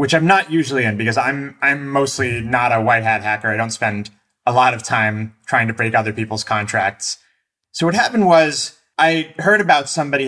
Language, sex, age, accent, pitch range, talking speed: English, male, 30-49, American, 110-145 Hz, 205 wpm